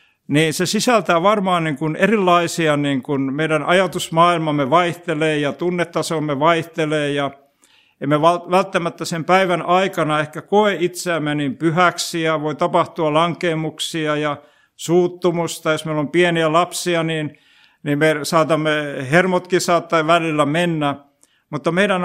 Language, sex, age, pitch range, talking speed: Finnish, male, 60-79, 150-180 Hz, 125 wpm